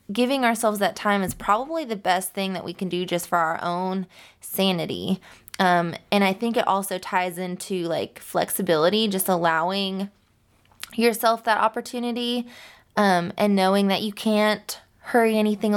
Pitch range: 185-230 Hz